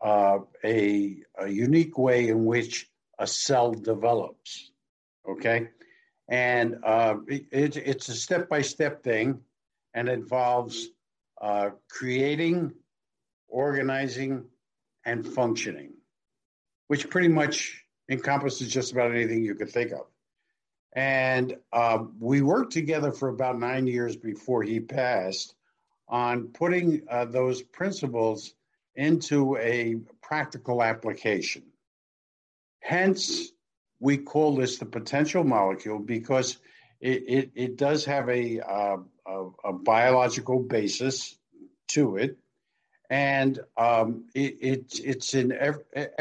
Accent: American